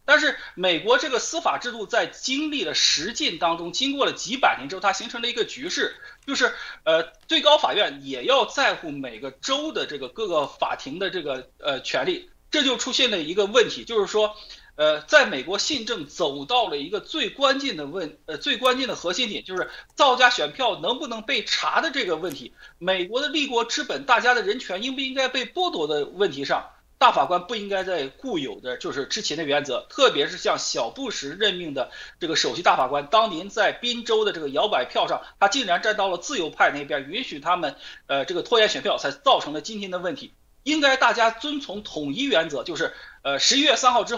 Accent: native